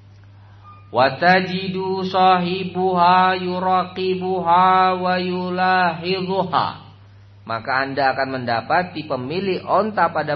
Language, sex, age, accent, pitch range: Indonesian, male, 40-59, native, 100-155 Hz